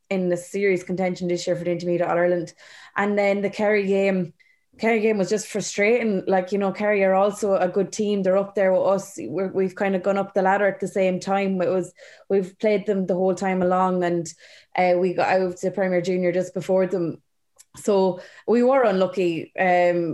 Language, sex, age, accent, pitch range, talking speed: English, female, 20-39, Irish, 185-205 Hz, 210 wpm